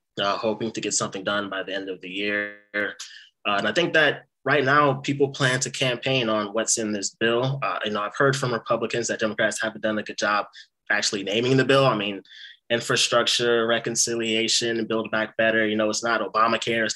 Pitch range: 105-120 Hz